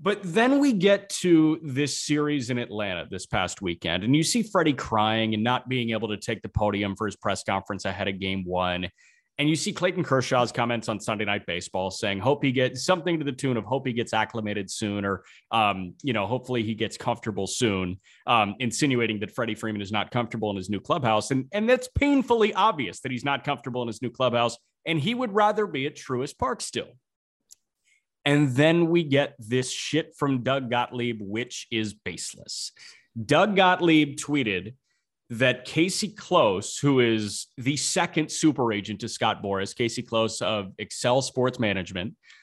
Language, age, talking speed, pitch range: English, 30-49, 190 wpm, 110-145 Hz